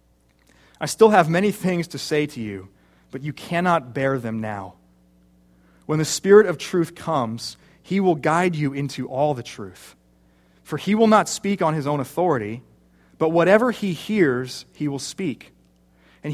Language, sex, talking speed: English, male, 170 wpm